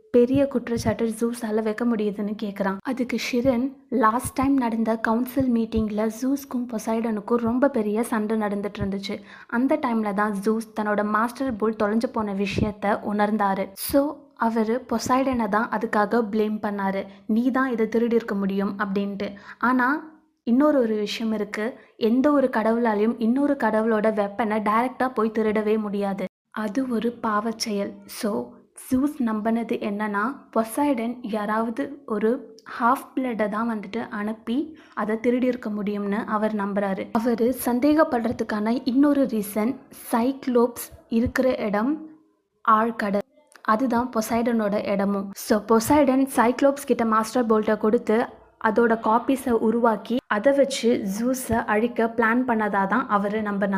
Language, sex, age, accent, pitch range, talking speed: Tamil, female, 20-39, native, 215-250 Hz, 115 wpm